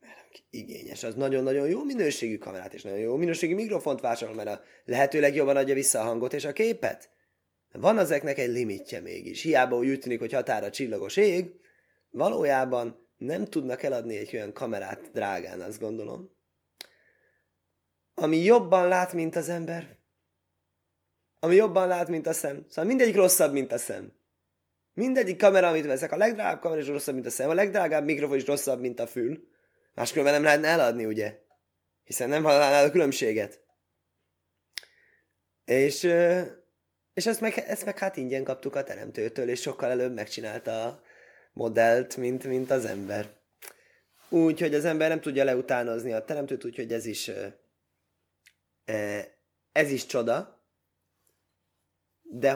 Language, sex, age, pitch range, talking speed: Hungarian, male, 20-39, 110-165 Hz, 150 wpm